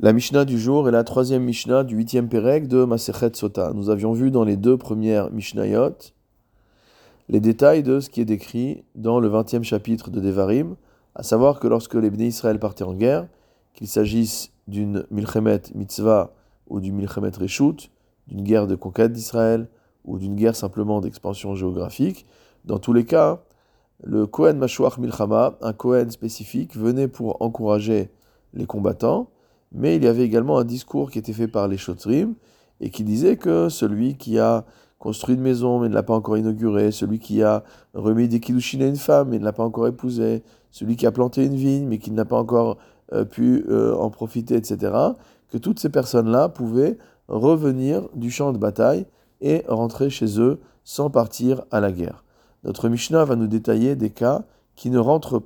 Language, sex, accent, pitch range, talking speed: French, male, French, 110-125 Hz, 185 wpm